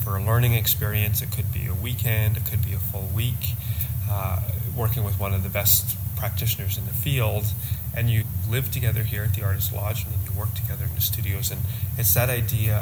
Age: 30-49